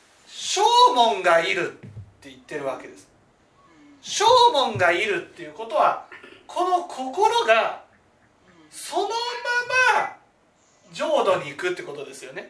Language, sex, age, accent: Japanese, male, 40-59, native